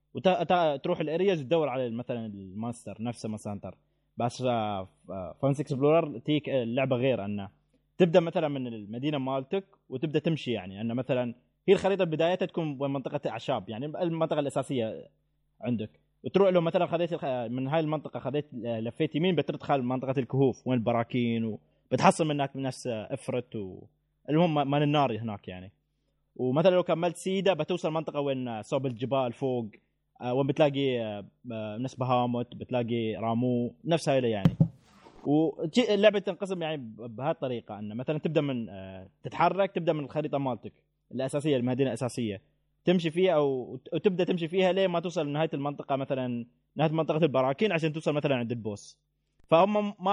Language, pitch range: Arabic, 120-160 Hz